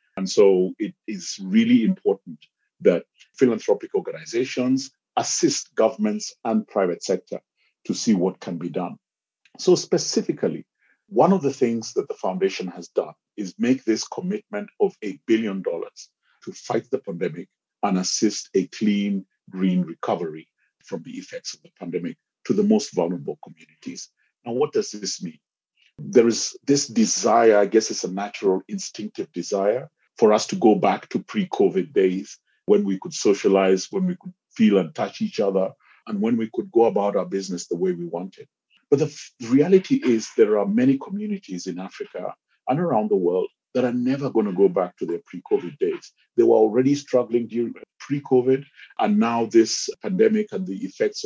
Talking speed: 170 wpm